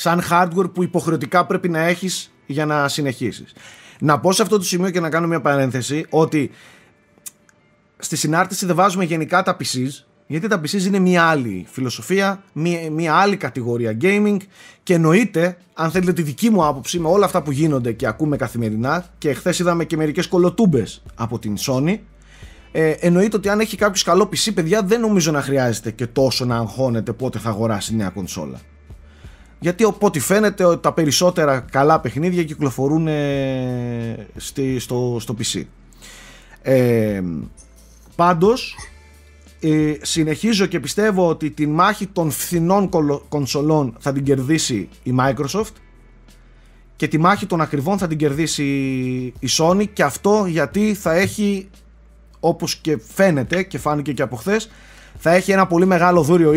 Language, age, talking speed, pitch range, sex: Greek, 30-49, 155 wpm, 130-180 Hz, male